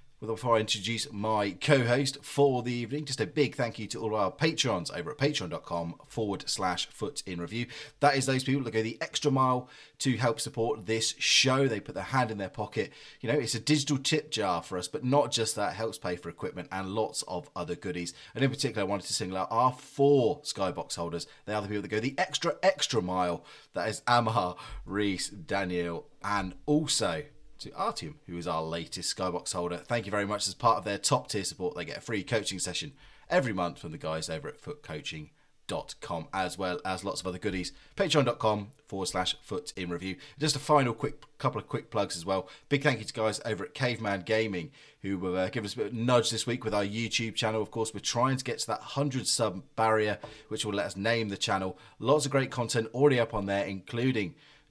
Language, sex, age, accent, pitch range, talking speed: English, male, 30-49, British, 100-145 Hz, 220 wpm